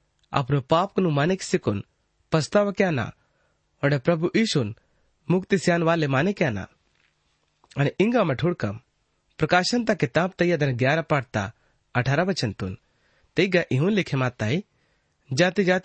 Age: 30-49